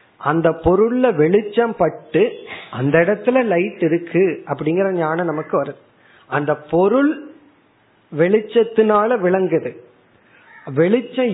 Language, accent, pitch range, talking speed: Tamil, native, 155-225 Hz, 90 wpm